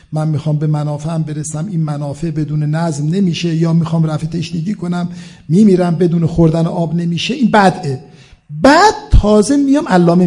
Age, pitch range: 50-69, 165-235 Hz